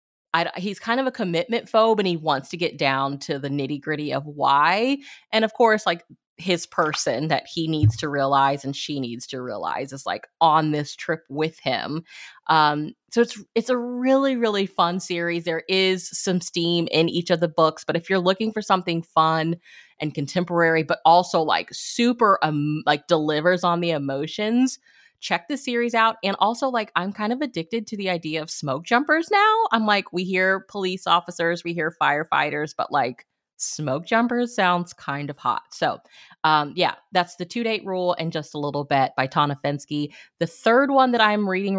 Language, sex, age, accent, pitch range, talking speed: English, female, 30-49, American, 155-215 Hz, 195 wpm